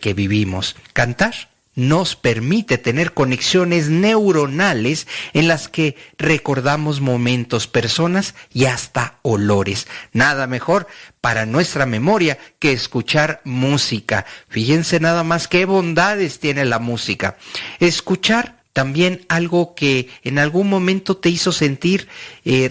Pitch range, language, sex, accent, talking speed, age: 125-180 Hz, Spanish, male, Mexican, 115 wpm, 50-69